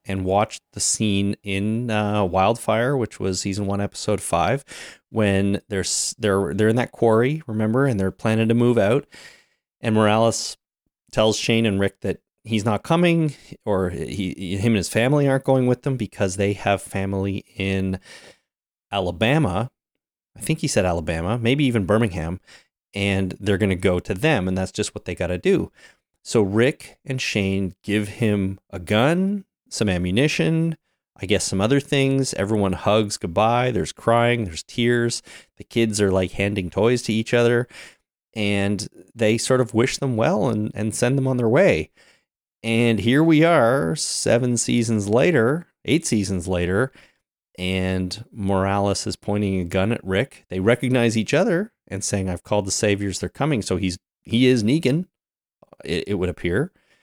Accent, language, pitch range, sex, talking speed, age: American, English, 95-120 Hz, male, 165 wpm, 30-49